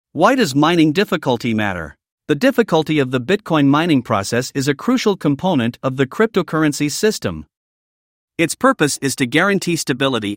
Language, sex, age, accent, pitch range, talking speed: English, male, 50-69, American, 130-170 Hz, 150 wpm